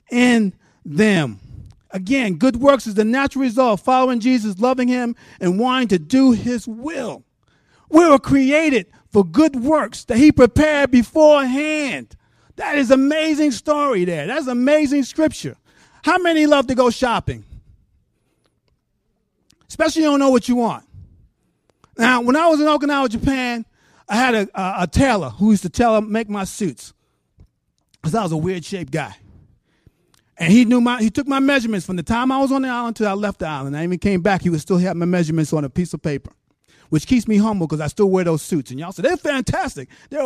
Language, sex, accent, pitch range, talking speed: English, male, American, 155-255 Hz, 200 wpm